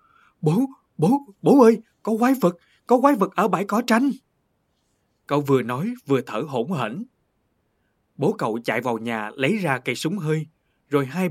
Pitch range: 130-210 Hz